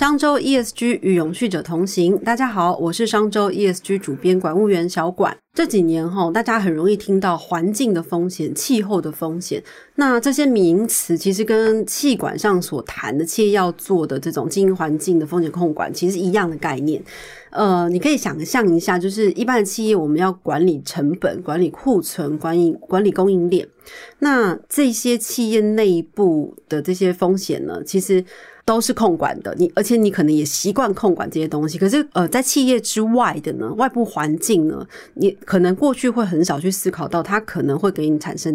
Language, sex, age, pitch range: Chinese, female, 30-49, 165-215 Hz